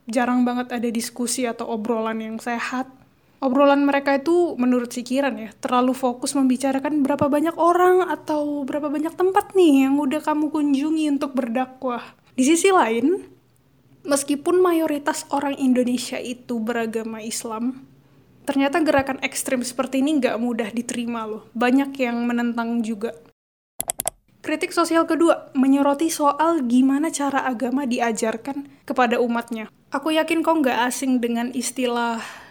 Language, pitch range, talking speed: Indonesian, 235-280 Hz, 135 wpm